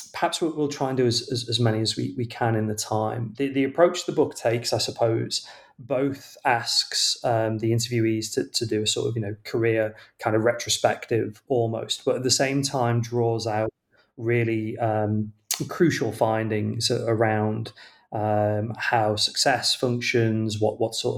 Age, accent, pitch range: 30-49, British, 110-130 Hz